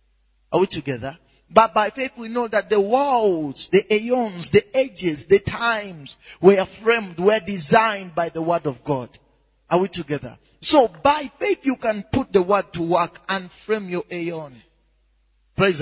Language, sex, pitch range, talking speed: English, male, 145-235 Hz, 165 wpm